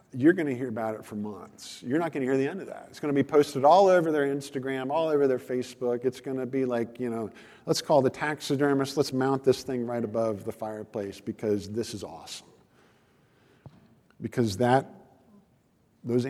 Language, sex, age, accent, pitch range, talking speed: English, male, 50-69, American, 110-165 Hz, 205 wpm